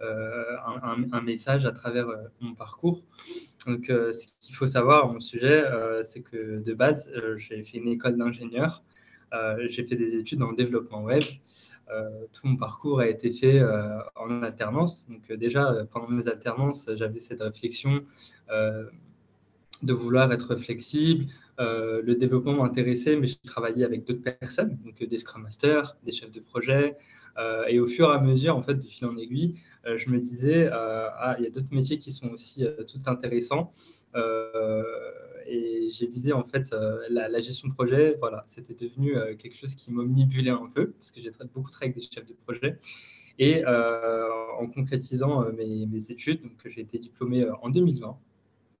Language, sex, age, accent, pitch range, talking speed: French, male, 20-39, French, 115-135 Hz, 190 wpm